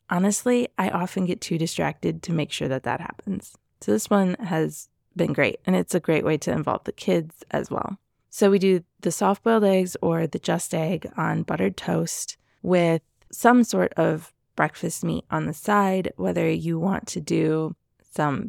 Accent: American